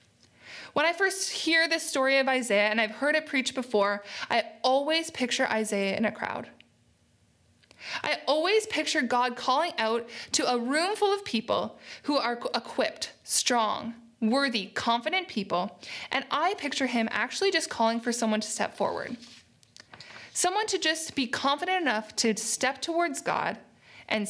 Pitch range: 220-285 Hz